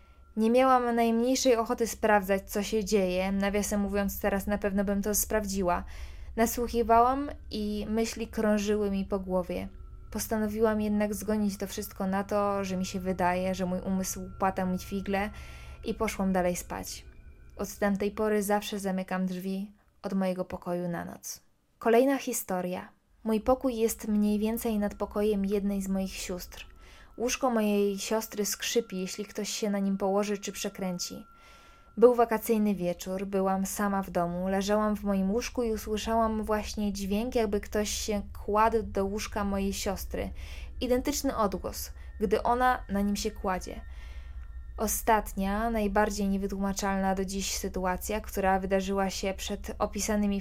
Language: Polish